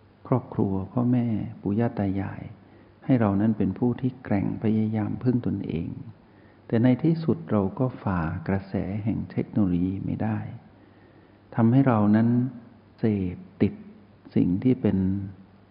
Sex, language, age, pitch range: male, Thai, 60-79, 95-115 Hz